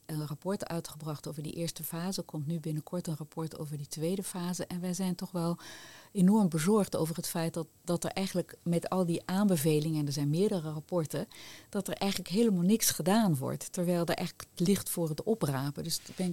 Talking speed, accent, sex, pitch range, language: 205 wpm, Dutch, female, 155-185 Hz, Dutch